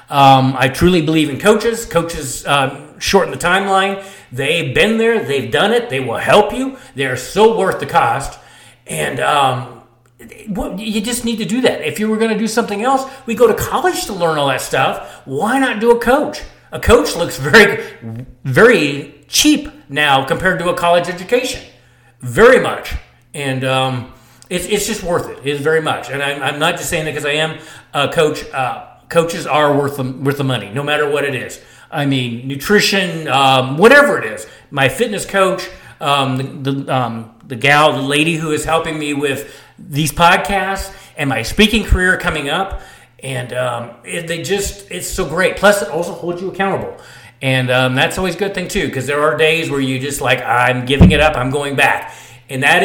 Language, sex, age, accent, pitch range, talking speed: English, male, 40-59, American, 135-195 Hz, 200 wpm